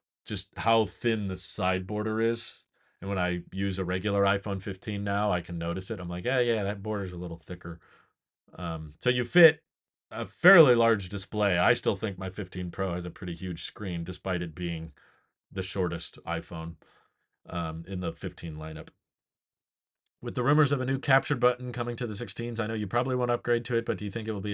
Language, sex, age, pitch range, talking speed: English, male, 30-49, 90-110 Hz, 215 wpm